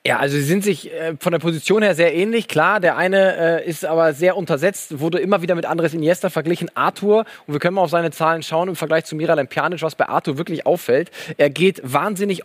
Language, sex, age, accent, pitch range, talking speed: German, male, 20-39, German, 135-170 Hz, 220 wpm